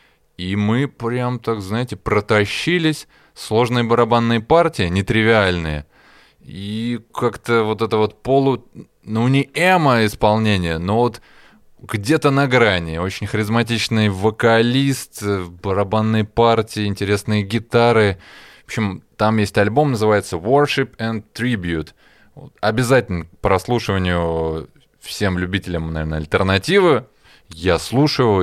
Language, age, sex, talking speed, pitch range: Russian, 20-39, male, 105 wpm, 90-115 Hz